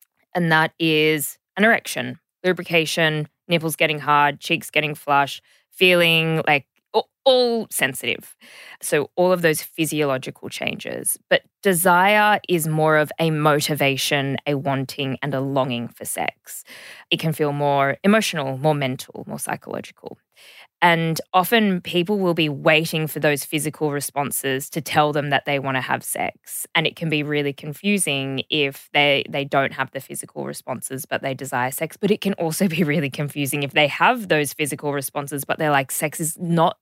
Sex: female